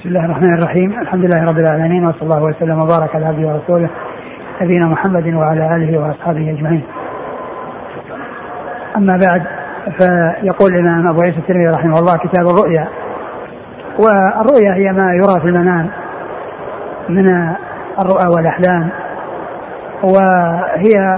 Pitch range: 170-195 Hz